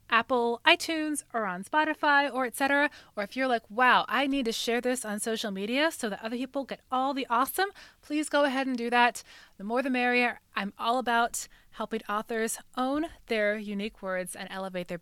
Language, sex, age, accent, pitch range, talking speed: English, female, 20-39, American, 205-270 Hz, 200 wpm